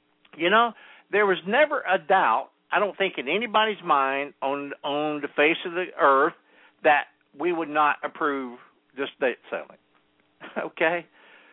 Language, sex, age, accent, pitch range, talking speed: English, male, 60-79, American, 120-190 Hz, 150 wpm